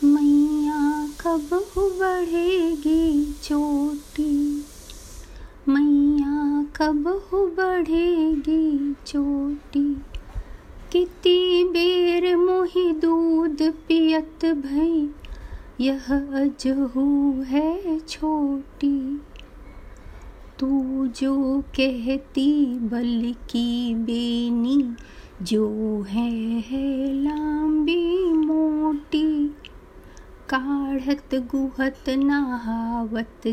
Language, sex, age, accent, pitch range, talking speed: Hindi, female, 30-49, native, 235-295 Hz, 50 wpm